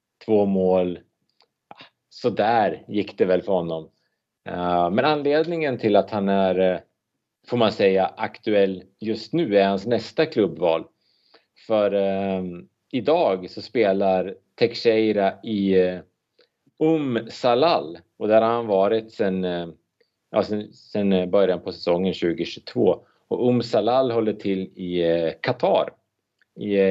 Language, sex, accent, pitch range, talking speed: Swedish, male, Norwegian, 90-105 Hz, 120 wpm